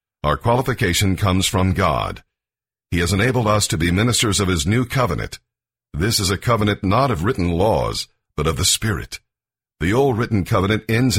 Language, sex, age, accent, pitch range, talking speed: English, male, 50-69, American, 90-115 Hz, 175 wpm